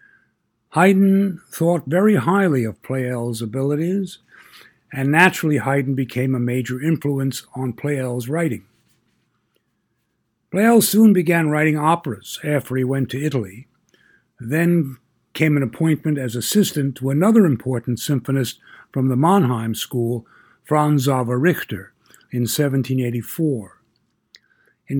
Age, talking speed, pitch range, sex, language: 60-79, 115 wpm, 125-165 Hz, male, English